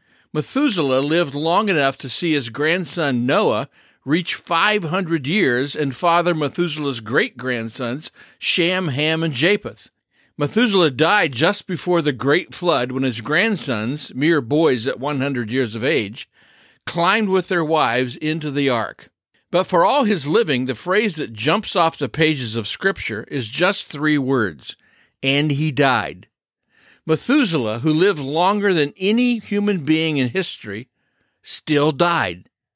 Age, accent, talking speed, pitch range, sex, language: 50-69, American, 140 wpm, 140-185 Hz, male, English